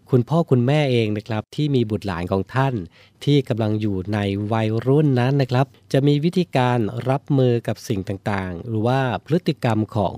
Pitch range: 105-130 Hz